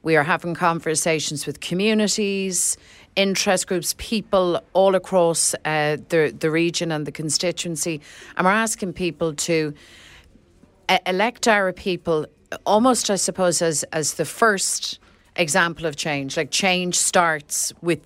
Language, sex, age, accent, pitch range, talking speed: English, female, 40-59, Irish, 150-175 Hz, 135 wpm